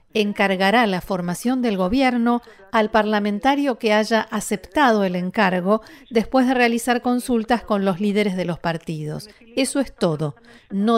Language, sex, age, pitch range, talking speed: Spanish, female, 40-59, 185-235 Hz, 140 wpm